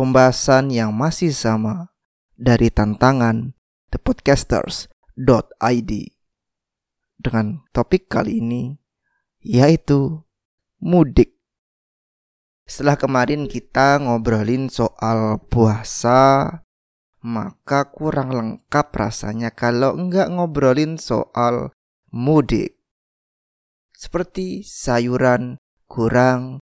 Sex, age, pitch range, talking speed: male, 20-39, 115-145 Hz, 70 wpm